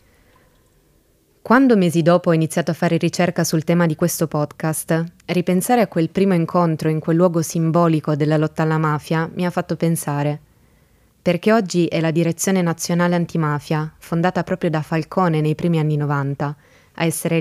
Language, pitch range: Italian, 155-175 Hz